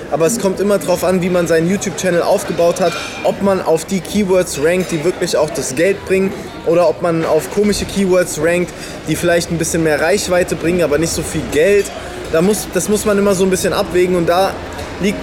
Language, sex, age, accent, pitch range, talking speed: German, male, 20-39, German, 150-195 Hz, 215 wpm